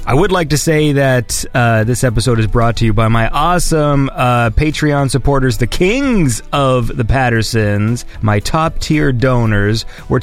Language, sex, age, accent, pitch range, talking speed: English, male, 30-49, American, 115-175 Hz, 170 wpm